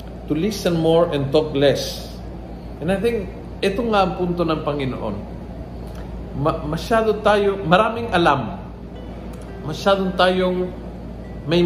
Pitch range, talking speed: 130-185 Hz, 120 wpm